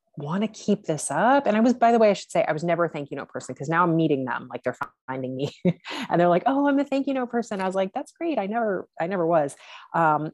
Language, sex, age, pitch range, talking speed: English, female, 30-49, 150-195 Hz, 300 wpm